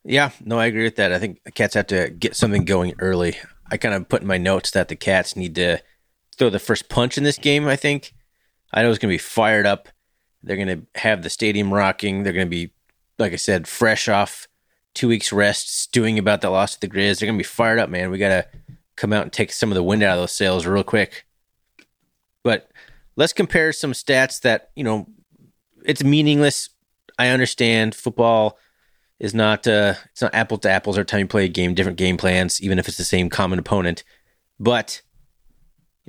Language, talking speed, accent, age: English, 220 wpm, American, 30-49